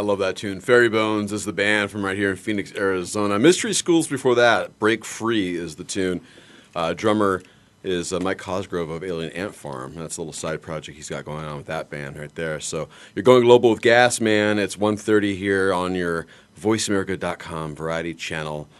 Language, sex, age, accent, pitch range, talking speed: English, male, 30-49, American, 80-100 Hz, 200 wpm